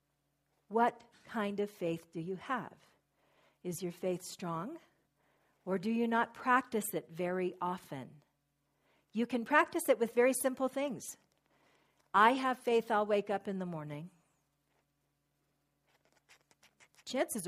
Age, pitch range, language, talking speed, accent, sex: 50-69, 155-215 Hz, English, 125 wpm, American, female